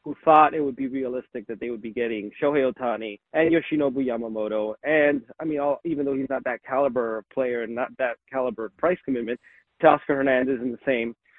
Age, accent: 30-49, American